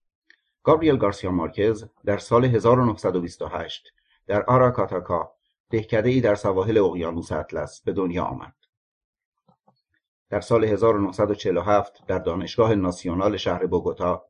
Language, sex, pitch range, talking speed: Persian, male, 105-125 Hz, 100 wpm